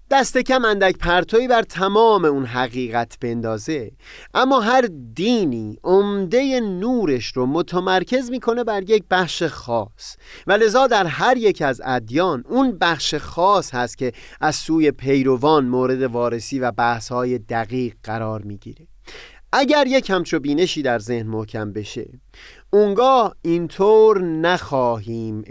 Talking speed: 125 wpm